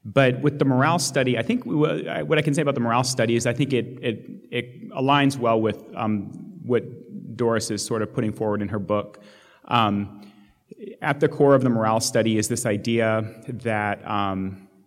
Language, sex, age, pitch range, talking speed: English, male, 30-49, 105-125 Hz, 200 wpm